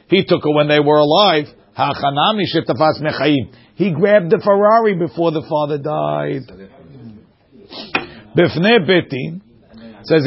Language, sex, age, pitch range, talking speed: English, male, 50-69, 145-180 Hz, 105 wpm